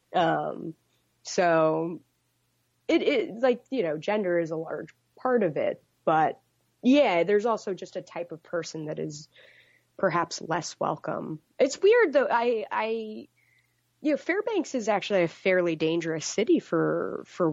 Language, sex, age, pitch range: English, female, 20-39, 160-225 Hz